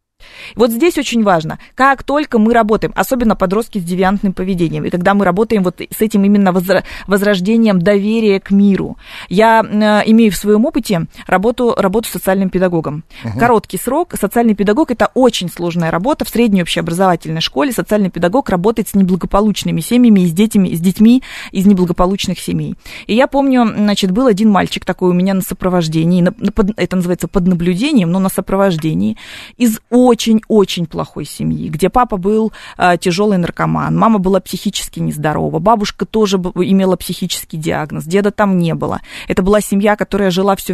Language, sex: Russian, female